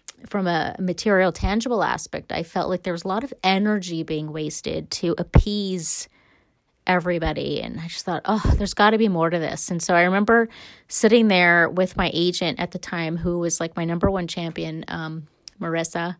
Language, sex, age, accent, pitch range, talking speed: English, female, 30-49, American, 165-200 Hz, 195 wpm